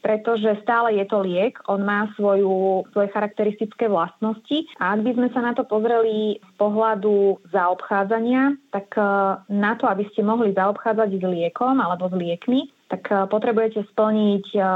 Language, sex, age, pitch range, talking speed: Slovak, female, 20-39, 185-215 Hz, 150 wpm